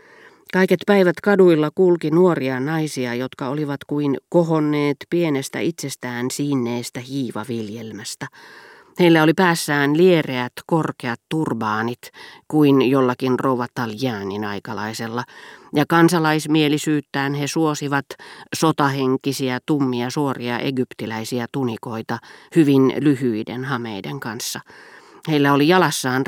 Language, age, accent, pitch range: Finnish, 40-59, native, 125-160 Hz